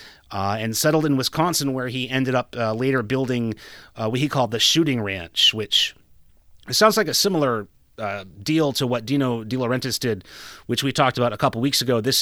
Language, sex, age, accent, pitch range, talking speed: English, male, 30-49, American, 110-145 Hz, 200 wpm